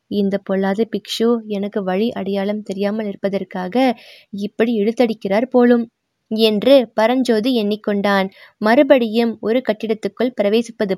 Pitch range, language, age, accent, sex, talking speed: 200-235 Hz, Tamil, 20-39, native, female, 100 wpm